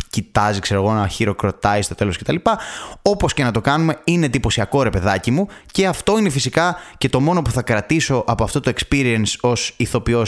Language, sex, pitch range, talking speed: Greek, male, 105-155 Hz, 210 wpm